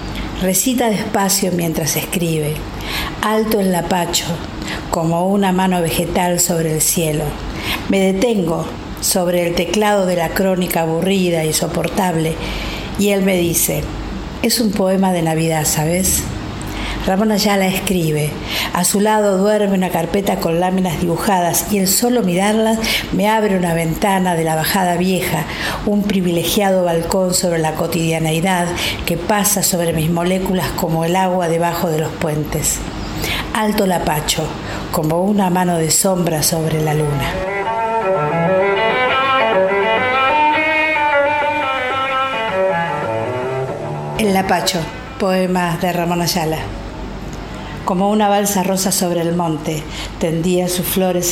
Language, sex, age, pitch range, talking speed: Spanish, female, 50-69, 165-195 Hz, 120 wpm